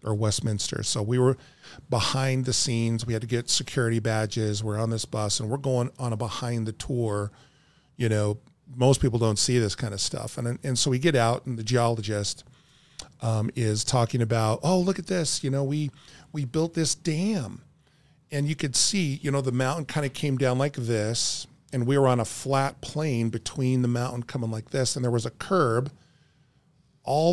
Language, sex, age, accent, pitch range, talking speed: English, male, 40-59, American, 120-145 Hz, 205 wpm